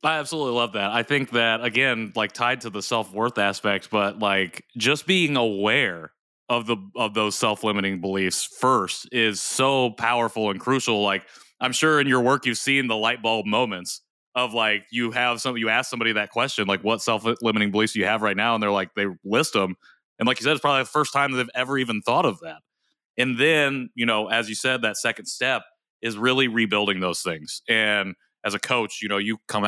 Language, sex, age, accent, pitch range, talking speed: English, male, 30-49, American, 105-135 Hz, 220 wpm